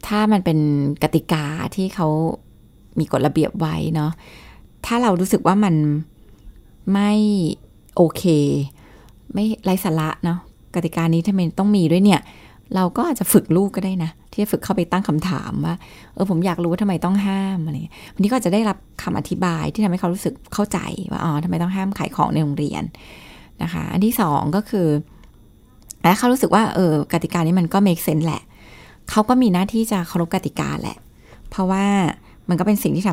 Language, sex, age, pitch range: Thai, female, 20-39, 155-195 Hz